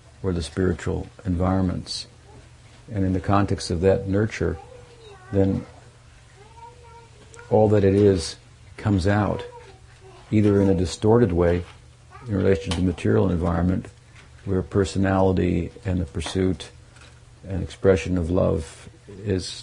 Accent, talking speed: American, 120 wpm